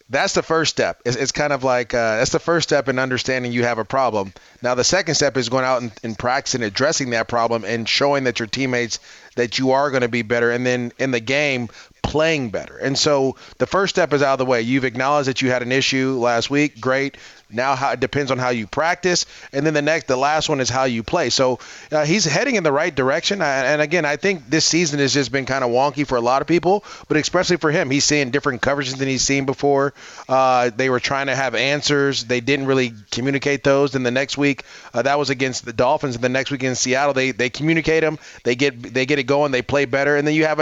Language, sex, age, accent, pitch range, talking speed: English, male, 30-49, American, 125-145 Hz, 255 wpm